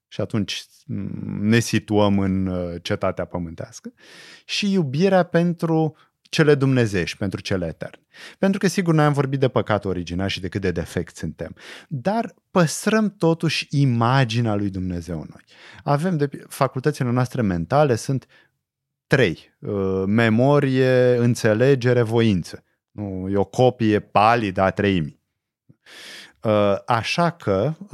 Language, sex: Romanian, male